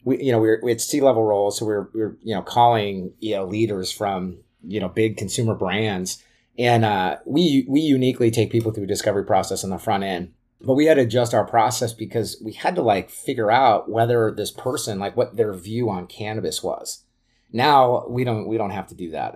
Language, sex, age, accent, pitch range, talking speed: English, male, 30-49, American, 100-120 Hz, 235 wpm